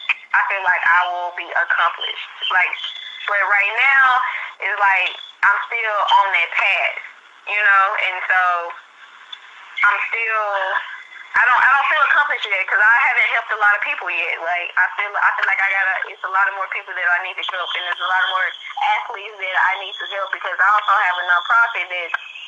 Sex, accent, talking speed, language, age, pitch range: female, American, 210 wpm, English, 10-29, 180-200 Hz